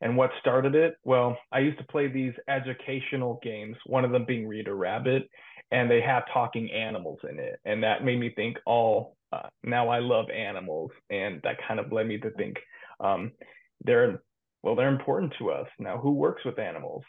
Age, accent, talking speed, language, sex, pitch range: 30-49, American, 195 wpm, English, male, 120-140 Hz